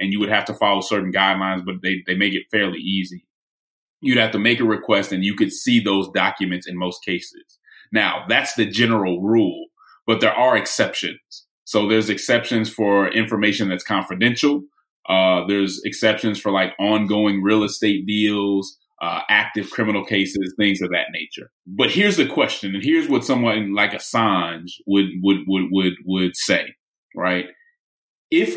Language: English